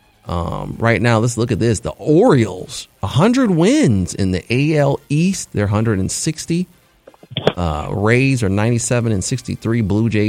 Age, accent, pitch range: 30-49, American, 90-115 Hz